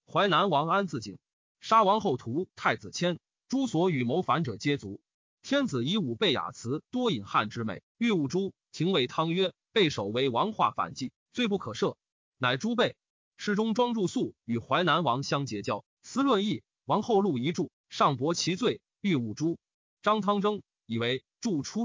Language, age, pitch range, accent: Chinese, 30-49, 140-210 Hz, native